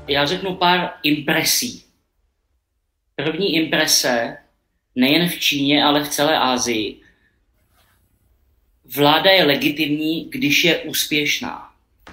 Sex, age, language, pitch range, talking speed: male, 30-49, Czech, 125-155 Hz, 100 wpm